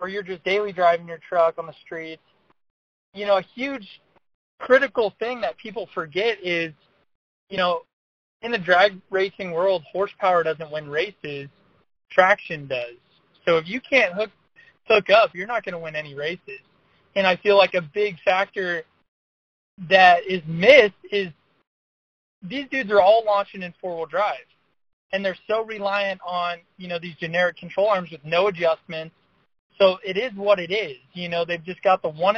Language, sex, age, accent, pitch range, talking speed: English, male, 20-39, American, 170-200 Hz, 170 wpm